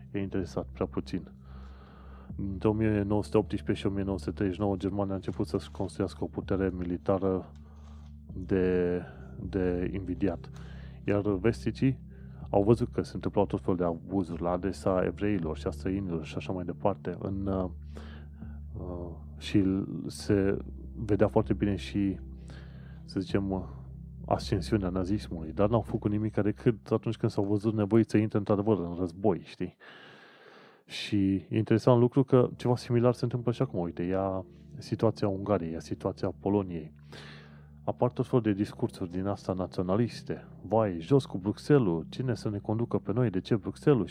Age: 30-49